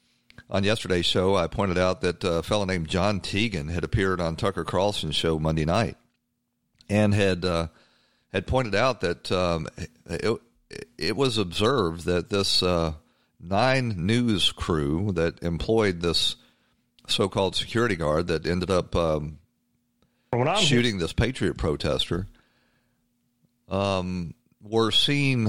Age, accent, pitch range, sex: 50-69, American, 85-105 Hz, male